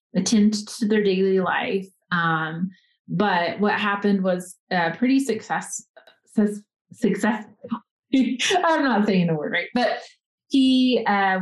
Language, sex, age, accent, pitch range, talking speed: English, female, 30-49, American, 180-220 Hz, 130 wpm